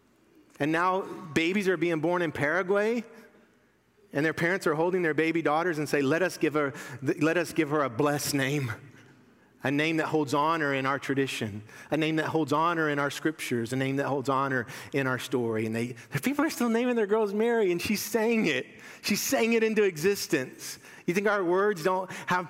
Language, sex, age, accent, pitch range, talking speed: English, male, 40-59, American, 135-195 Hz, 210 wpm